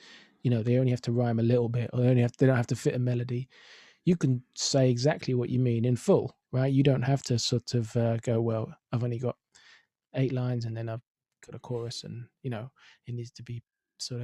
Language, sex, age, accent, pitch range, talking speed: English, male, 20-39, British, 120-135 Hz, 255 wpm